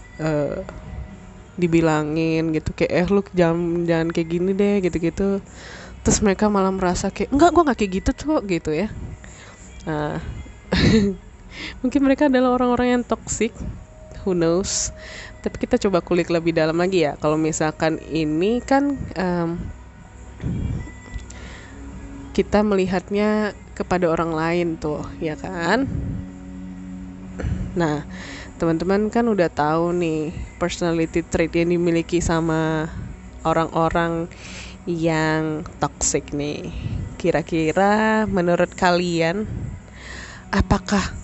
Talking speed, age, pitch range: 110 wpm, 10-29, 155-205 Hz